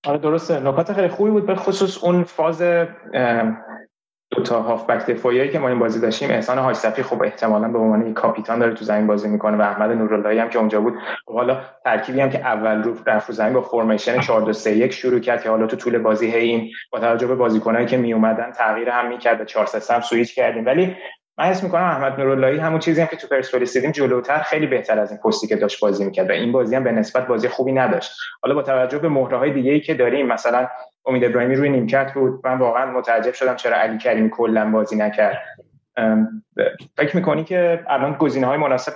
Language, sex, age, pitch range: Persian, male, 20-39, 110-140 Hz